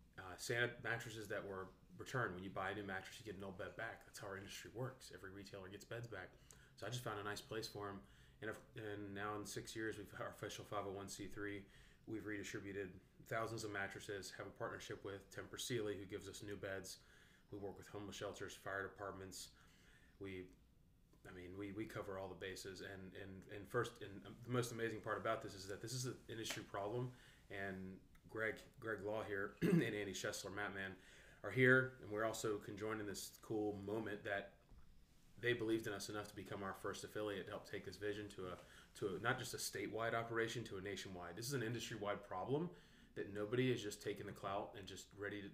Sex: male